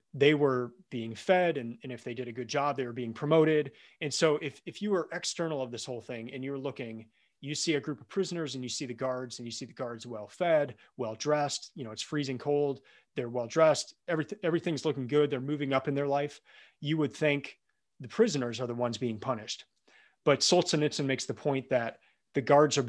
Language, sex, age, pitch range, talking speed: English, male, 30-49, 120-150 Hz, 220 wpm